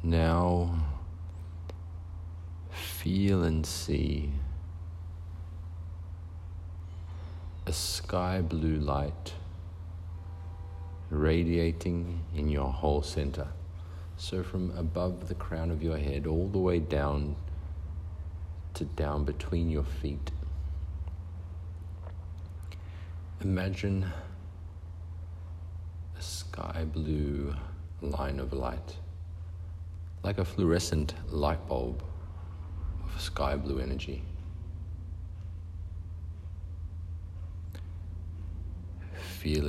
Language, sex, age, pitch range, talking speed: English, male, 50-69, 80-85 Hz, 70 wpm